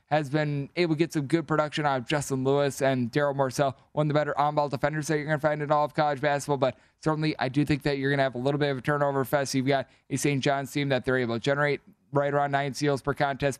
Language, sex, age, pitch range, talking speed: English, male, 20-39, 140-155 Hz, 285 wpm